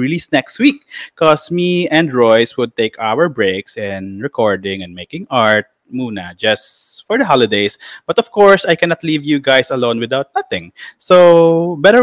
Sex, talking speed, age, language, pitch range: male, 165 wpm, 20-39, Filipino, 115-175 Hz